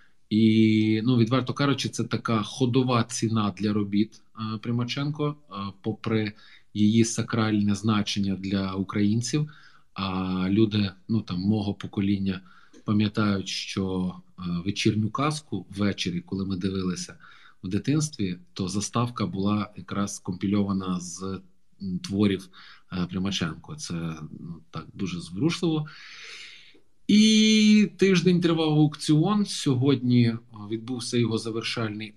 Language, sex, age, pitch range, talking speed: Ukrainian, male, 20-39, 95-120 Hz, 100 wpm